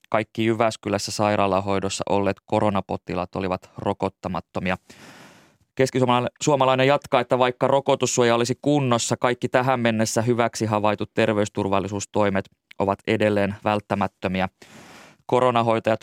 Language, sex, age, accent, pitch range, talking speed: Finnish, male, 20-39, native, 100-120 Hz, 90 wpm